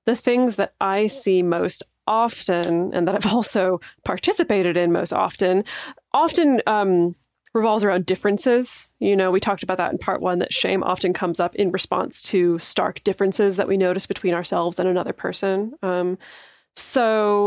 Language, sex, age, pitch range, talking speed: English, female, 20-39, 180-210 Hz, 170 wpm